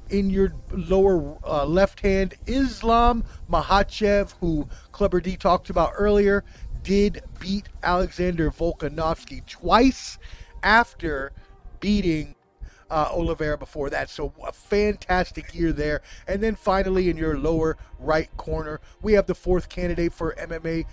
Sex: male